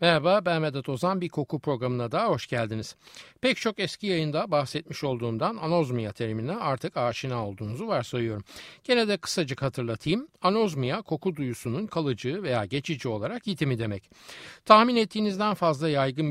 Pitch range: 120-185 Hz